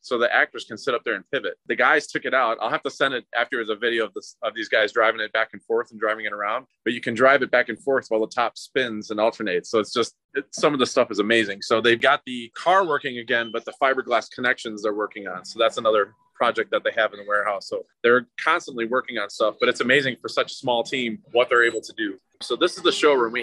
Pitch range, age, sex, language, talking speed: 120-155 Hz, 20-39, male, English, 280 wpm